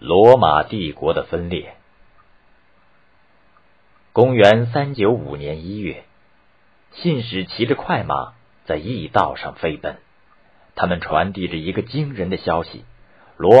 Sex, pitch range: male, 85-120 Hz